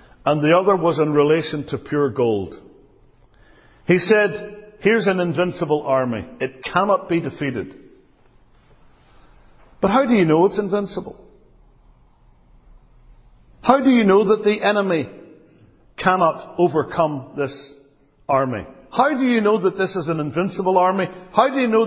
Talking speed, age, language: 140 wpm, 60-79, English